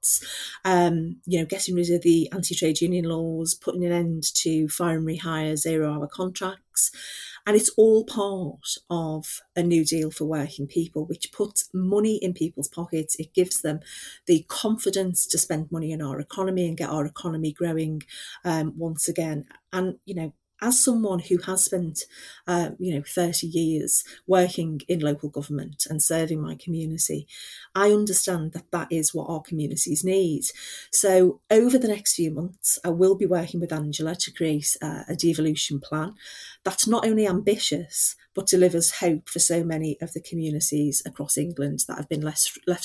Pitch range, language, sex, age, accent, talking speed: 155-185 Hz, English, female, 30-49, British, 170 wpm